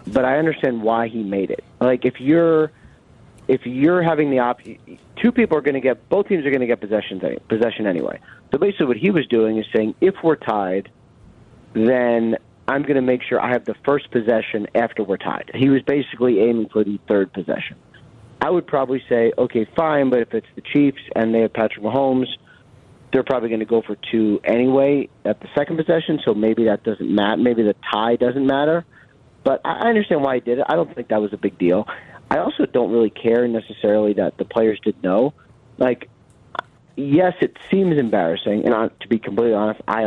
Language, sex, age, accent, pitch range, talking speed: English, male, 30-49, American, 110-135 Hz, 210 wpm